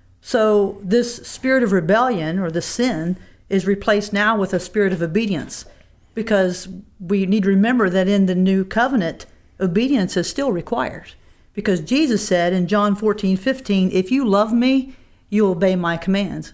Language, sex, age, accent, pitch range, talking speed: English, female, 50-69, American, 185-225 Hz, 165 wpm